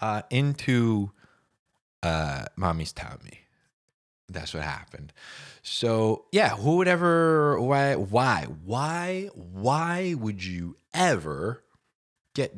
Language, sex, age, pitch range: English, male, 20-39, 100-145 Hz